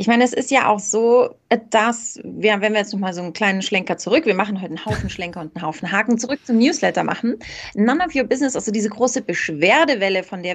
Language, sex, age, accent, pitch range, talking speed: German, female, 30-49, German, 200-245 Hz, 240 wpm